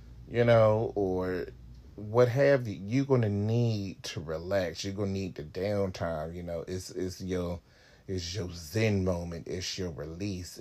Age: 30-49